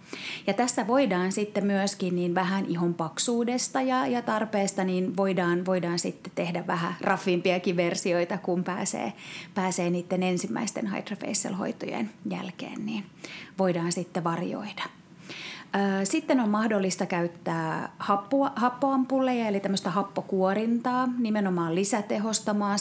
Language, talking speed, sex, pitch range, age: Finnish, 110 wpm, female, 180-210 Hz, 30-49